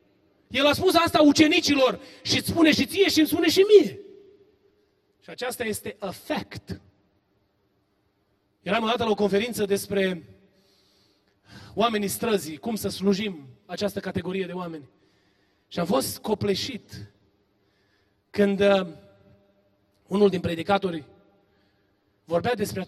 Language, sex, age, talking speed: Romanian, male, 30-49, 120 wpm